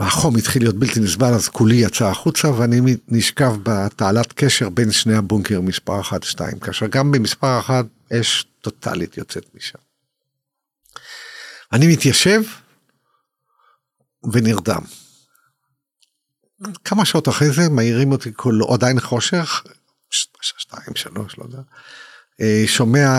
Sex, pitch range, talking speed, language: male, 110-145 Hz, 110 wpm, Hebrew